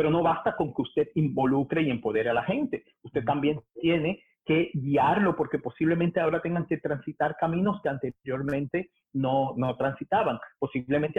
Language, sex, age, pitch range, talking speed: Spanish, male, 40-59, 160-210 Hz, 160 wpm